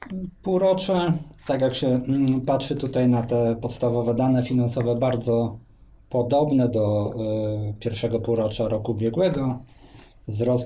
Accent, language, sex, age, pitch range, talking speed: native, Polish, male, 20-39, 110-130 Hz, 105 wpm